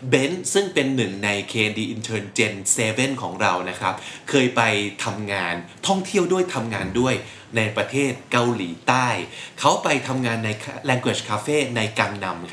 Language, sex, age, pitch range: Thai, male, 20-39, 105-135 Hz